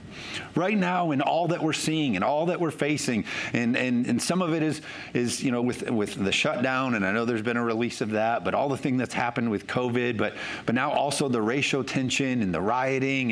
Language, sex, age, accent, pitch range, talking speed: English, male, 40-59, American, 125-160 Hz, 240 wpm